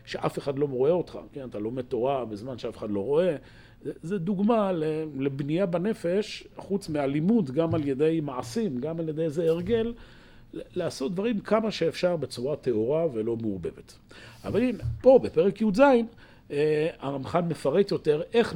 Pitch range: 115-185 Hz